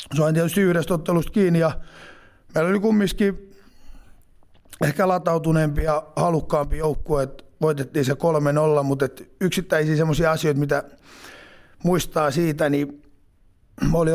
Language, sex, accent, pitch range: Finnish, male, native, 145-170 Hz